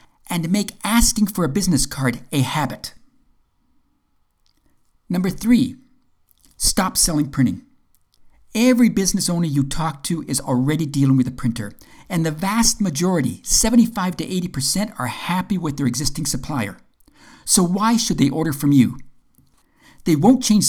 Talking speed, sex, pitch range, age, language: 145 wpm, male, 135-200 Hz, 50-69, English